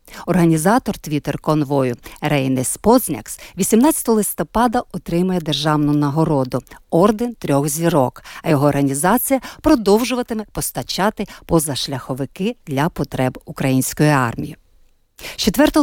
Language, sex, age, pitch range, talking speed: Ukrainian, female, 50-69, 150-220 Hz, 85 wpm